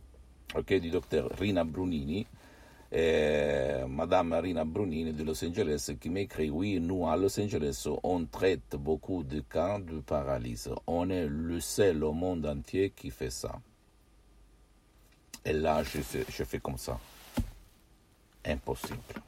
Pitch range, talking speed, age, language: 75-85 Hz, 135 wpm, 60-79, Italian